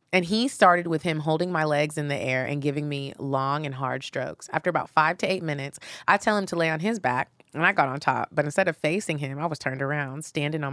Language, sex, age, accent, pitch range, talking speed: English, female, 20-39, American, 145-185 Hz, 270 wpm